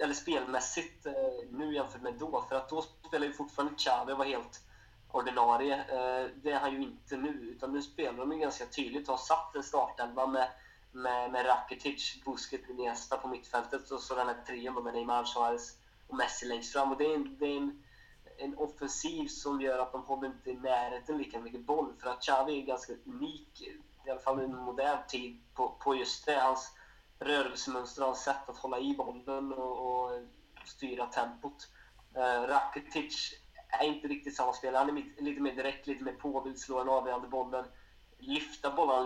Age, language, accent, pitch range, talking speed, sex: 20-39, English, Swedish, 125-140 Hz, 190 wpm, male